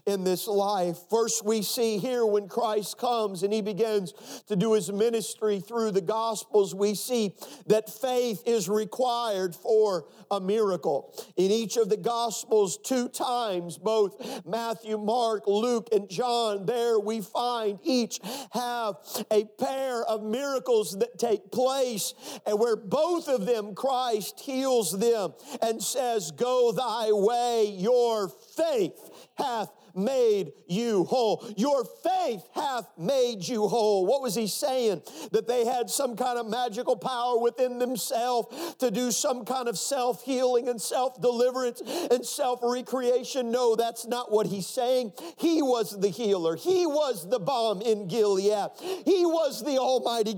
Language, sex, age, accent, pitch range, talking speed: English, male, 50-69, American, 215-255 Hz, 145 wpm